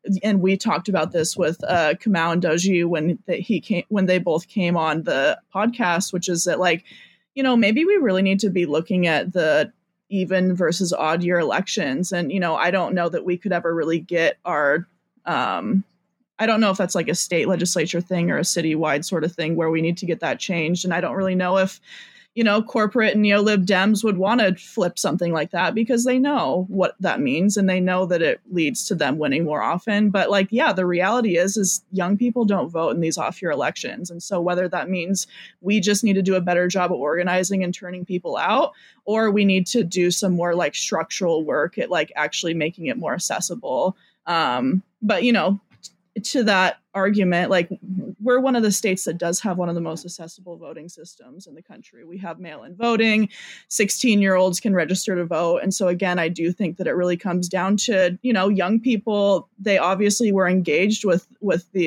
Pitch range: 175-210 Hz